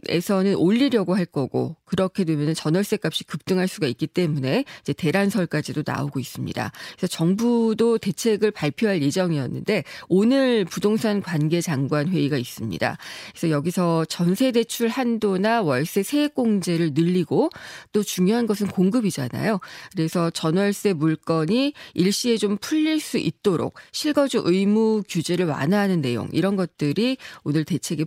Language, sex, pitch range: Korean, female, 160-230 Hz